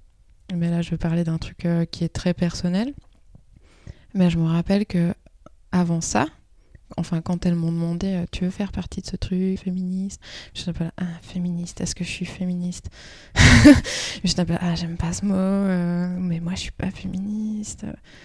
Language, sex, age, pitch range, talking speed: French, female, 20-39, 165-185 Hz, 185 wpm